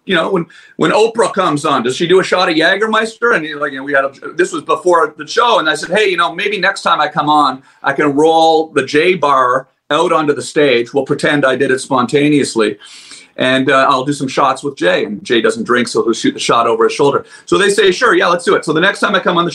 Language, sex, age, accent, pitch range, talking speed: English, male, 40-59, American, 145-190 Hz, 275 wpm